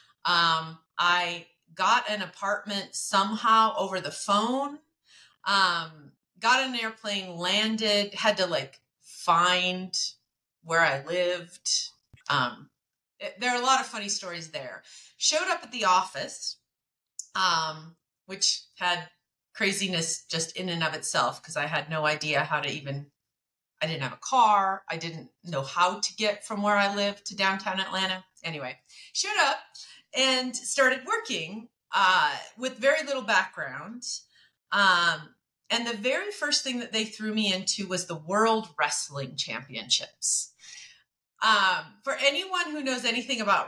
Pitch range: 175-235 Hz